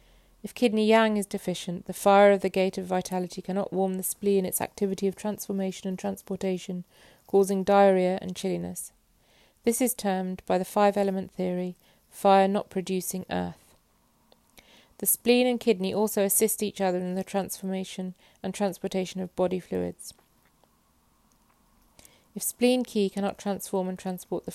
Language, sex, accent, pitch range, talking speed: English, female, British, 185-200 Hz, 150 wpm